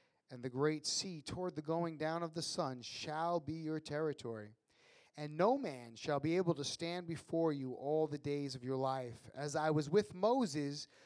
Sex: male